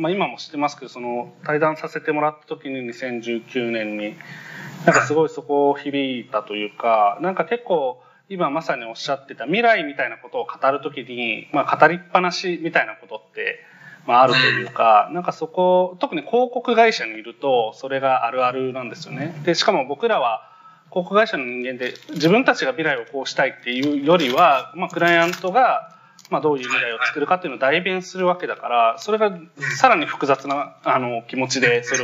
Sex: male